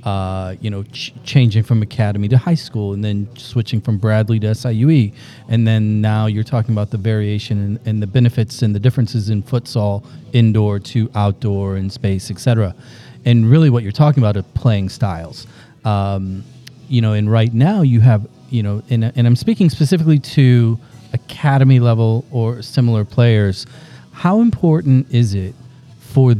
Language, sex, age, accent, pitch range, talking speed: English, male, 30-49, American, 105-130 Hz, 175 wpm